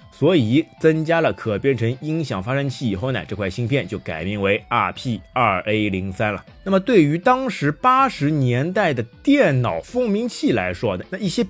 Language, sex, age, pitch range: Chinese, male, 30-49, 110-165 Hz